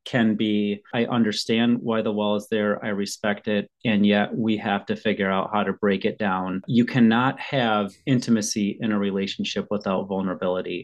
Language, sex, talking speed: English, male, 185 wpm